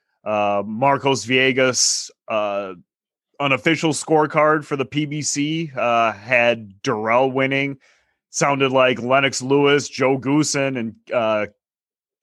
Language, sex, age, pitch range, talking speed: English, male, 30-49, 115-140 Hz, 105 wpm